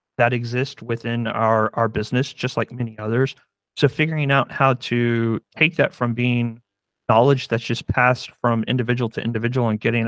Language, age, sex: English, 40-59, male